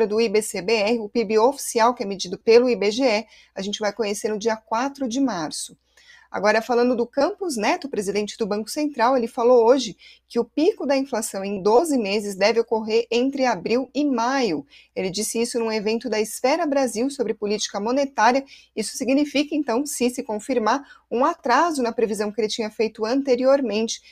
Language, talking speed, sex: Portuguese, 175 wpm, female